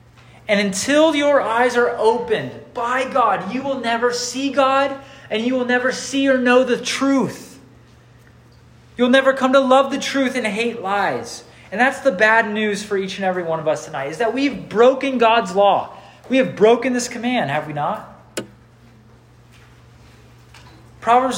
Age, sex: 30-49, male